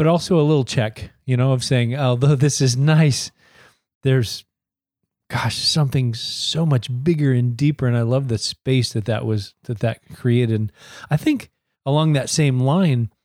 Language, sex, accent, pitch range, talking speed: English, male, American, 120-150 Hz, 175 wpm